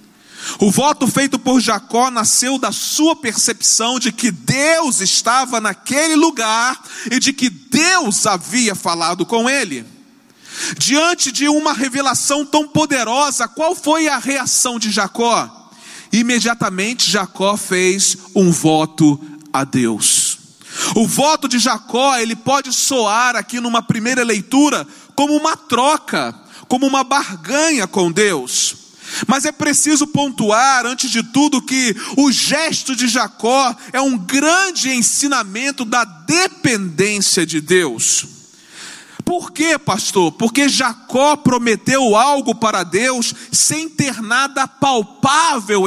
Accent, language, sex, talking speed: Brazilian, Portuguese, male, 120 wpm